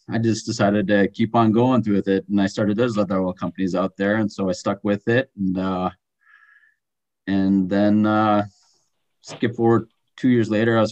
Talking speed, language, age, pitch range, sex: 205 wpm, English, 30-49, 95-115 Hz, male